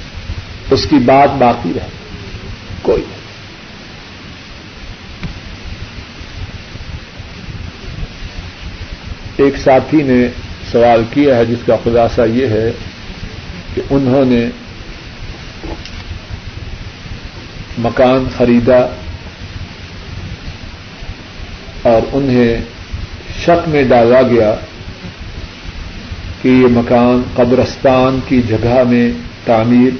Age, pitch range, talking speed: 50-69, 90-130 Hz, 70 wpm